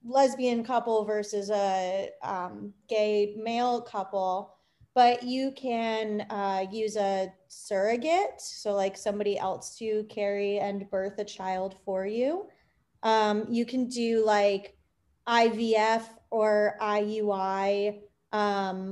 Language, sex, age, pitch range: English, female, 20-39, 205-240 Hz